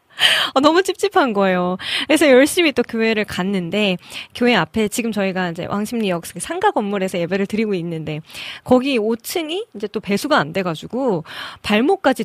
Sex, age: female, 20-39